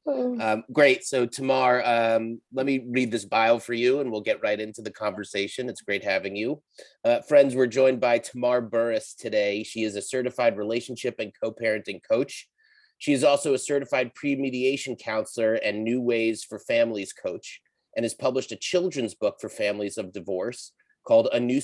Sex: male